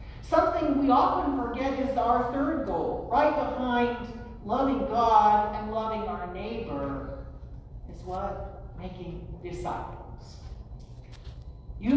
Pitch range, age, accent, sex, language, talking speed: 175-250 Hz, 50-69, American, male, English, 105 wpm